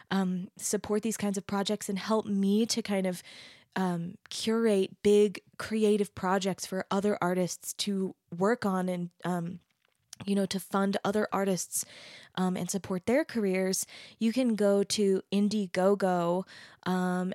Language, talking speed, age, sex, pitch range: English, 145 wpm, 20-39, female, 185-210 Hz